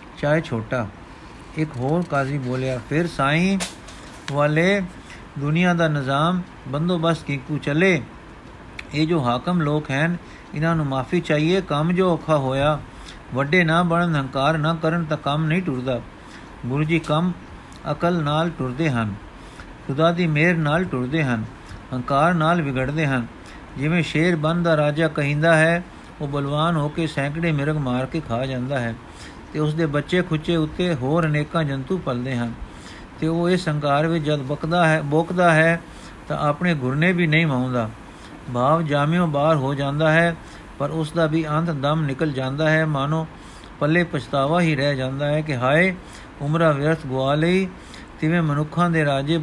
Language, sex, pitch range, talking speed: Punjabi, male, 135-165 Hz, 160 wpm